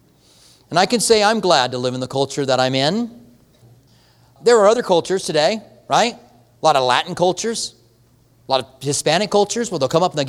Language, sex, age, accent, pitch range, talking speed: English, male, 40-59, American, 145-215 Hz, 210 wpm